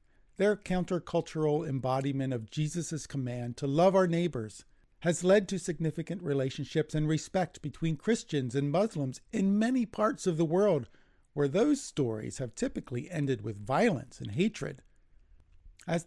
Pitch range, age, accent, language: 120-165 Hz, 50-69, American, English